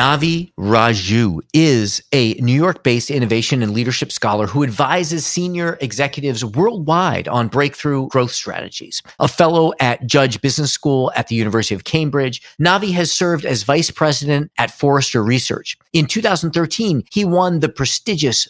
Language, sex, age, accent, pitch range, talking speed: English, male, 40-59, American, 125-165 Hz, 145 wpm